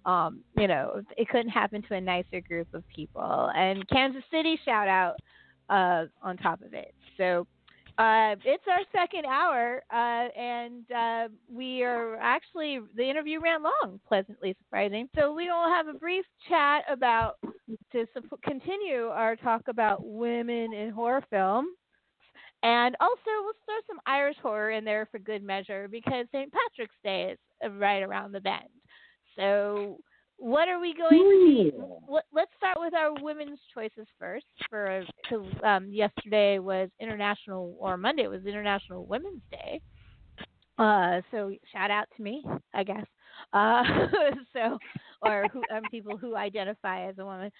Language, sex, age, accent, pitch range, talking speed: English, female, 40-59, American, 195-275 Hz, 155 wpm